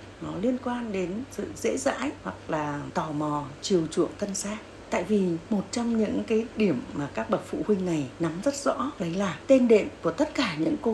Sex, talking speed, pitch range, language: female, 220 wpm, 180-240 Hz, Vietnamese